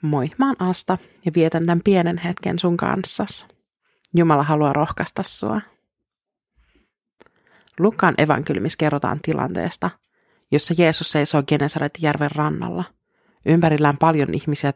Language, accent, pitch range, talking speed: Finnish, native, 150-170 Hz, 100 wpm